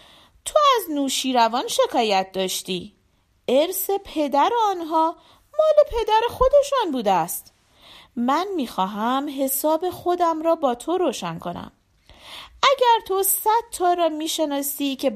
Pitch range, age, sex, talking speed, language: 240-370 Hz, 40-59, female, 120 wpm, Persian